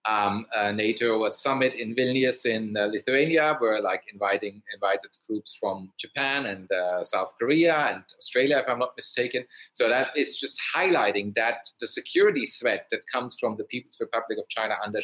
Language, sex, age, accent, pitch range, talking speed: English, male, 30-49, German, 105-140 Hz, 180 wpm